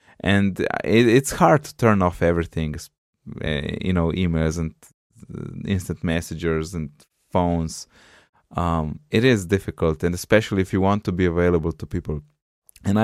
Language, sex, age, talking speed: English, male, 20-39, 140 wpm